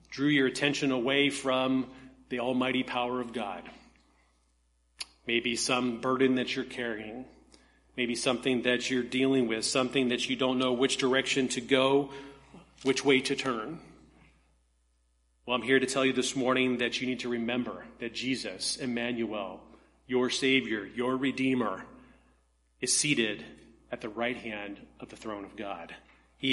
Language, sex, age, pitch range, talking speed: English, male, 40-59, 115-135 Hz, 150 wpm